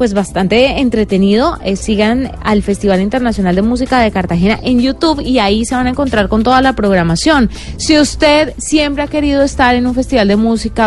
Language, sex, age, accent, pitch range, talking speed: Spanish, female, 30-49, Colombian, 195-250 Hz, 195 wpm